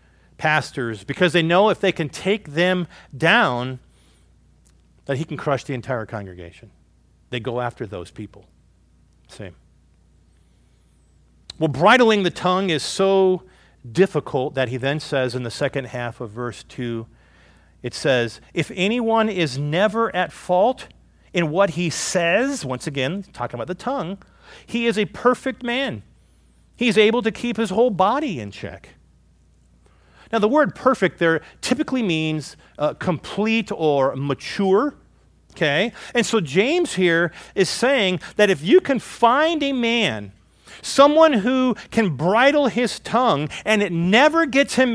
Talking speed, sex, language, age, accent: 145 wpm, male, English, 40-59, American